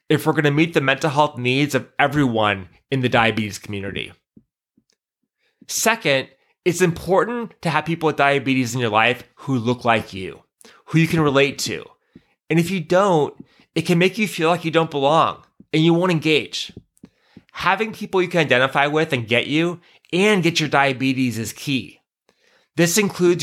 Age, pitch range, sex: 30-49, 130-165 Hz, male